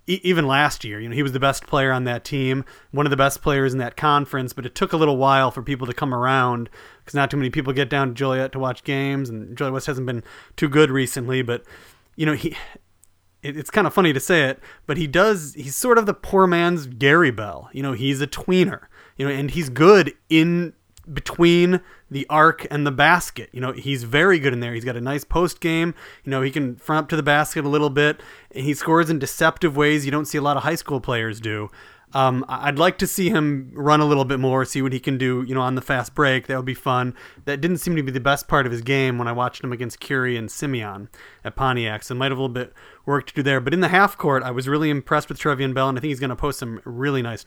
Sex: male